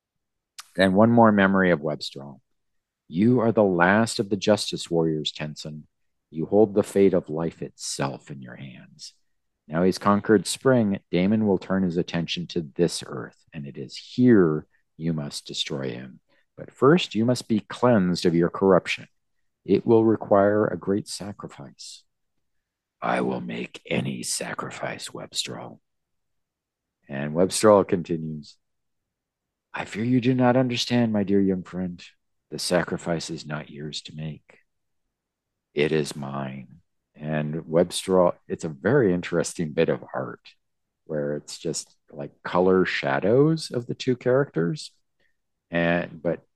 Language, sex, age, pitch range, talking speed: English, male, 50-69, 80-110 Hz, 140 wpm